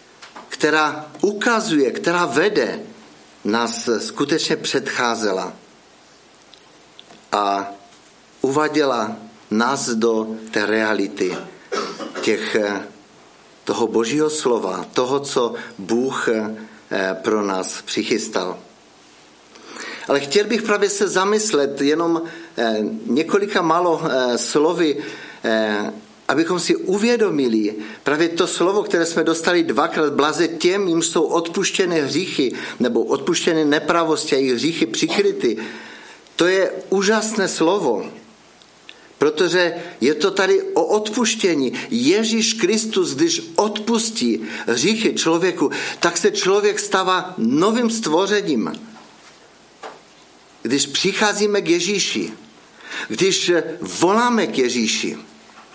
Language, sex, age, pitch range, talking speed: Czech, male, 50-69, 135-220 Hz, 90 wpm